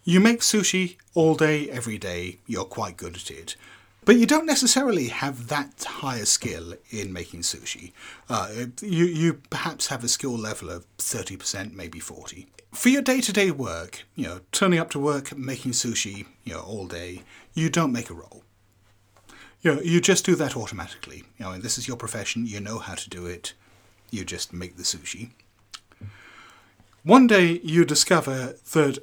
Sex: male